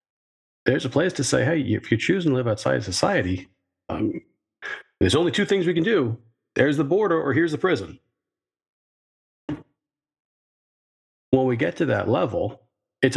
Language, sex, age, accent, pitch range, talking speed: English, male, 40-59, American, 100-130 Hz, 165 wpm